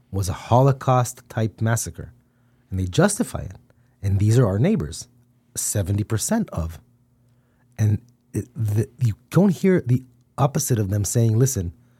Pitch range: 115-130 Hz